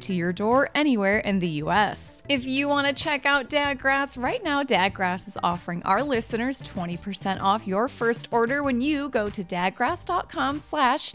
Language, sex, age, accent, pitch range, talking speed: English, female, 20-39, American, 185-265 Hz, 170 wpm